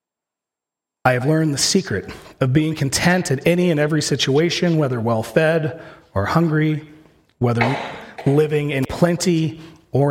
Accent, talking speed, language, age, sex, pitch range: American, 130 wpm, English, 40-59, male, 130-170 Hz